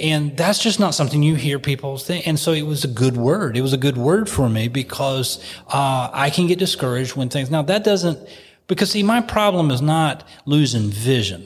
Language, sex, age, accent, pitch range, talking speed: English, male, 30-49, American, 120-155 Hz, 220 wpm